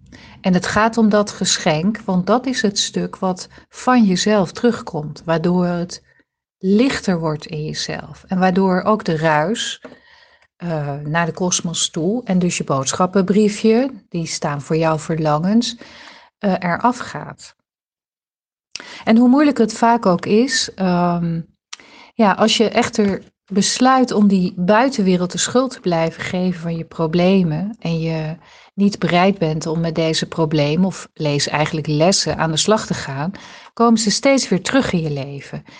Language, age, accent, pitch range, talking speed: Dutch, 40-59, Dutch, 165-215 Hz, 155 wpm